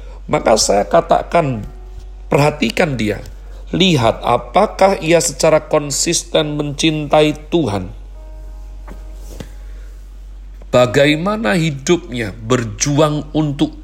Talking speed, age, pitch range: 70 wpm, 40-59, 110-155 Hz